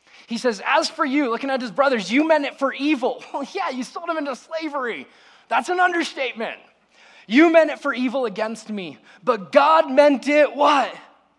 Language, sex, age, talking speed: English, male, 20-39, 195 wpm